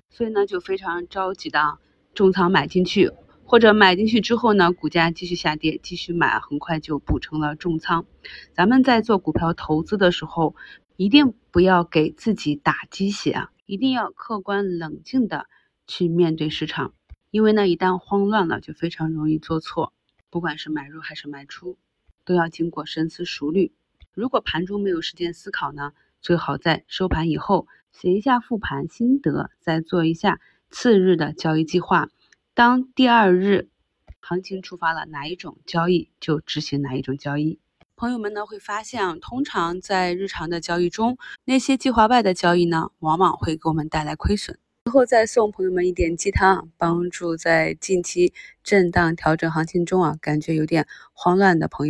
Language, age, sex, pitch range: Chinese, 30-49, female, 160-200 Hz